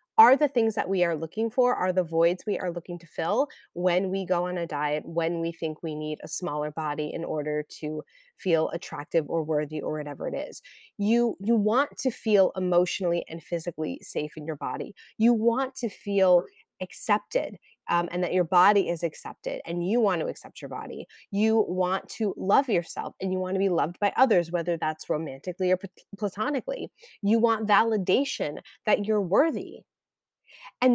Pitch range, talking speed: 175-220 Hz, 190 wpm